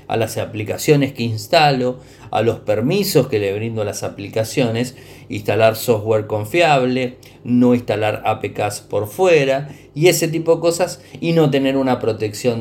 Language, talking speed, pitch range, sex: Spanish, 150 wpm, 115-145 Hz, male